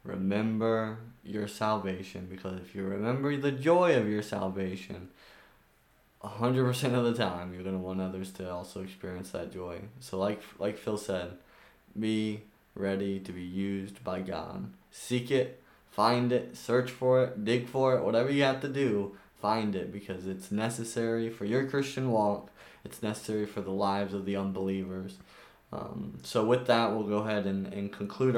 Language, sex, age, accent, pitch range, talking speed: English, male, 20-39, American, 100-120 Hz, 170 wpm